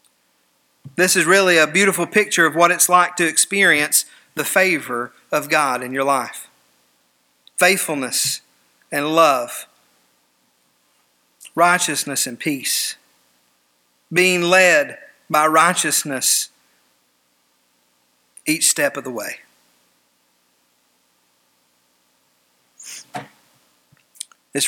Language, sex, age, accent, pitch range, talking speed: English, male, 50-69, American, 125-185 Hz, 85 wpm